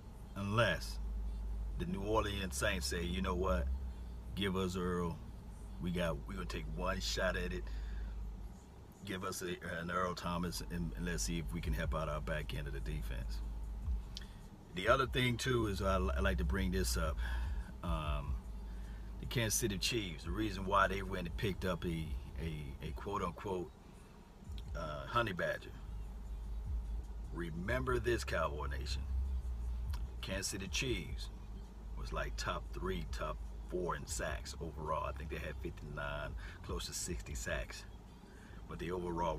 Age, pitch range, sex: 40-59, 65-95 Hz, male